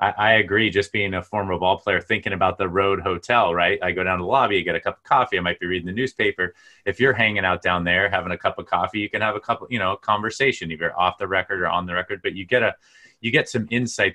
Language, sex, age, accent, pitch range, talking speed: English, male, 30-49, American, 90-105 Hz, 285 wpm